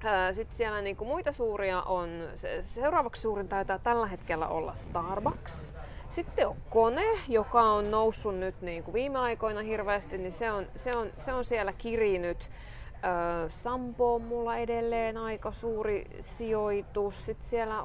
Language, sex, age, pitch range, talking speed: Finnish, female, 30-49, 180-225 Hz, 150 wpm